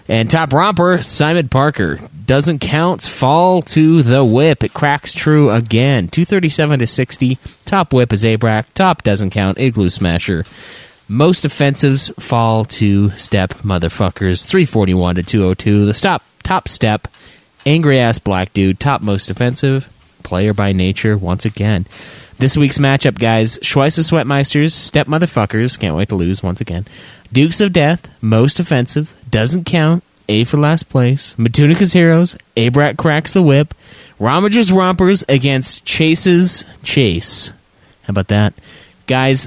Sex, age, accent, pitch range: male, 20-39, American, 105-150 Hz